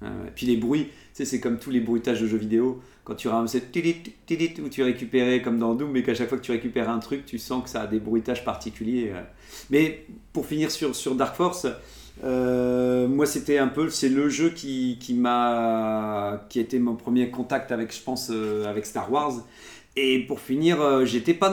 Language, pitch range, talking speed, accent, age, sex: French, 125-150 Hz, 220 wpm, French, 40-59, male